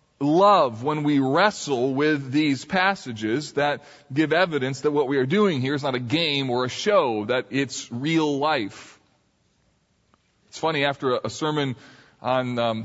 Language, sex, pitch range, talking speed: English, male, 135-200 Hz, 160 wpm